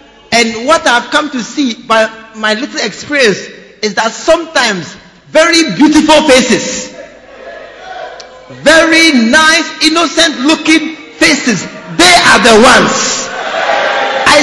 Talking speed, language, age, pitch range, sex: 105 wpm, English, 50-69, 230-310 Hz, male